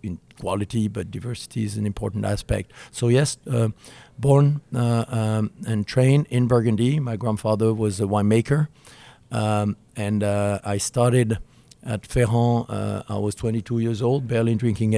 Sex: male